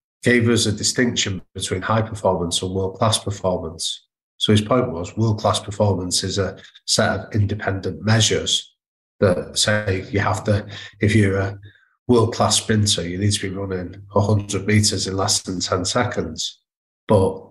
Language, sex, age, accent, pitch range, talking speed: English, male, 30-49, British, 95-110 Hz, 160 wpm